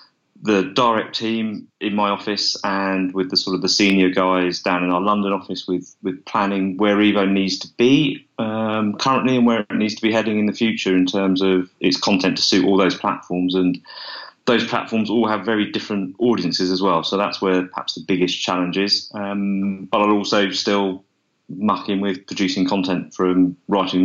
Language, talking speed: English, 195 wpm